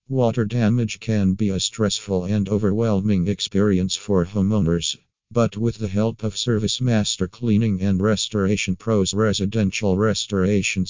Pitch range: 95-110 Hz